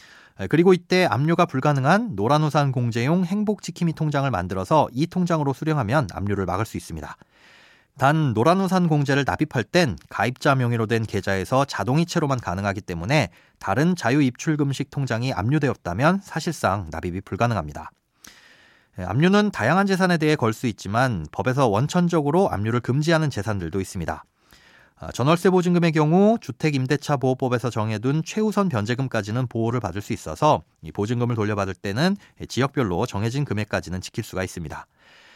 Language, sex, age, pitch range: Korean, male, 30-49, 105-160 Hz